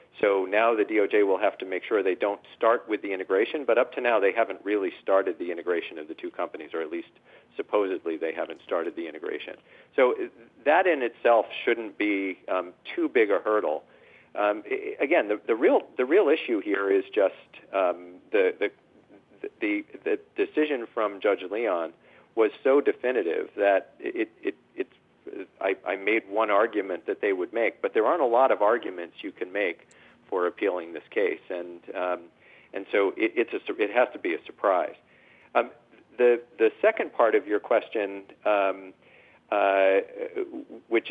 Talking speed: 180 wpm